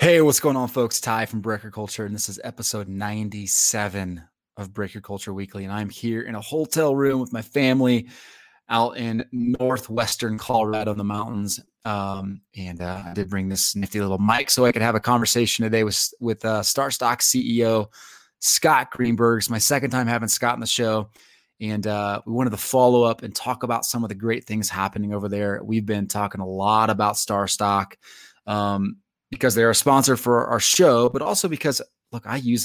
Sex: male